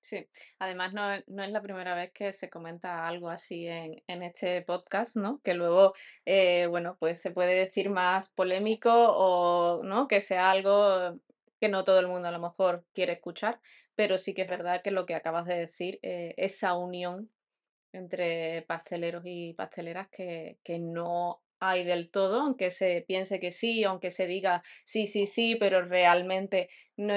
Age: 20-39